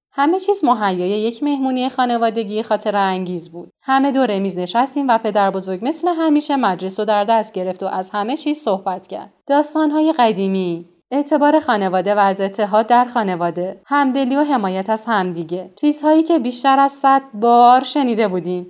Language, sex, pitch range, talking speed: Persian, female, 195-275 Hz, 160 wpm